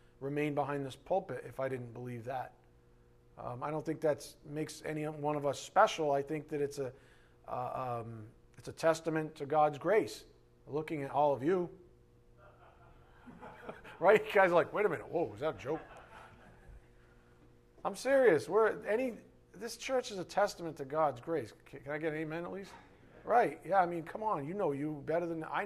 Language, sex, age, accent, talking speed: English, male, 40-59, American, 190 wpm